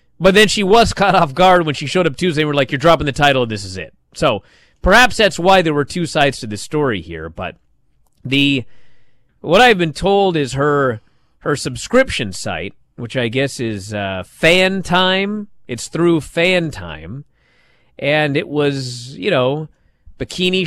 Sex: male